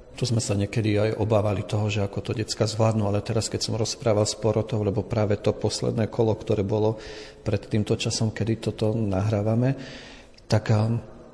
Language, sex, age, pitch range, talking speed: Slovak, male, 40-59, 100-115 Hz, 175 wpm